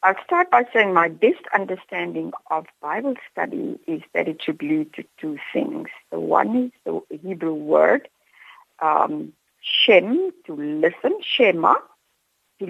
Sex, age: female, 60-79